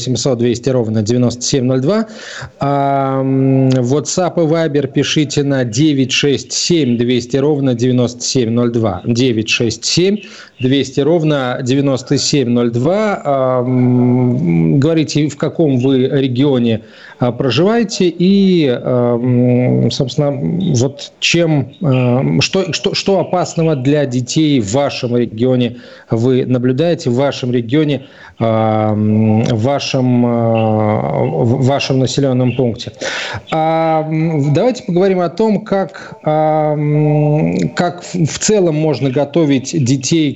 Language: Russian